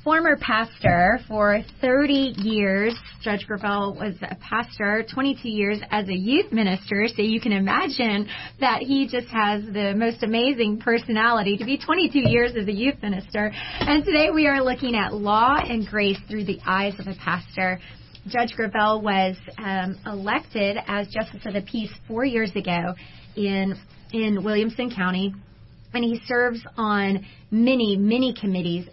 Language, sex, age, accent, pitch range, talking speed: English, female, 30-49, American, 190-235 Hz, 155 wpm